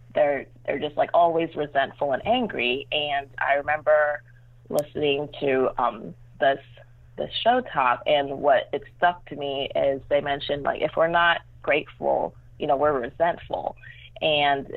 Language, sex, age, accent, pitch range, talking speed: English, female, 20-39, American, 125-160 Hz, 150 wpm